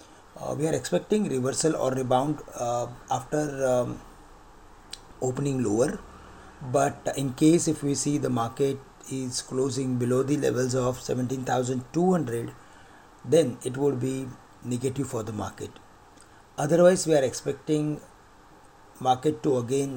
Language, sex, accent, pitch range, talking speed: English, male, Indian, 125-150 Hz, 125 wpm